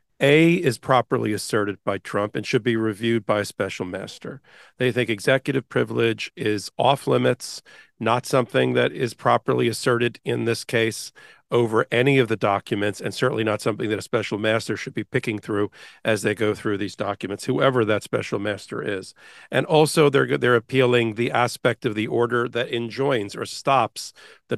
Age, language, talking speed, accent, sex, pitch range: 50-69, English, 180 wpm, American, male, 110-140 Hz